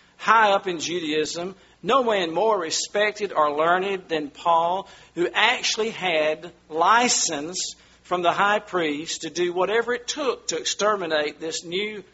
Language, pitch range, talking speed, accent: English, 155-215 Hz, 145 wpm, American